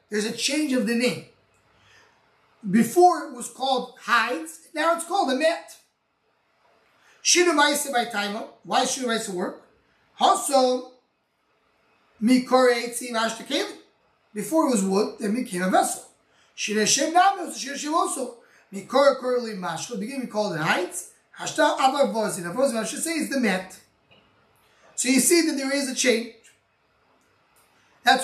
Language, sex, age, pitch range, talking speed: English, male, 30-49, 220-290 Hz, 140 wpm